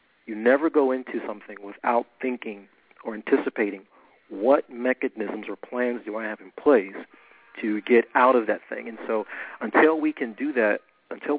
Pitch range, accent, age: 110-130 Hz, American, 40-59